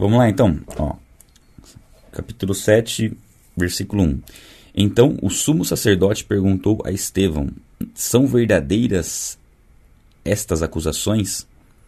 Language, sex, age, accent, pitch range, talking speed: Portuguese, male, 30-49, Brazilian, 80-105 Hz, 95 wpm